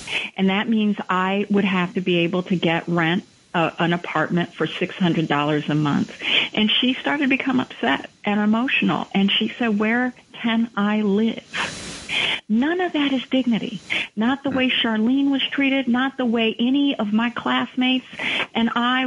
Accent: American